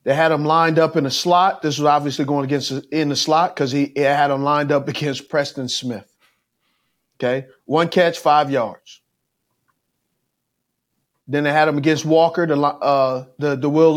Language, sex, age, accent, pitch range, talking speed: English, male, 30-49, American, 125-155 Hz, 175 wpm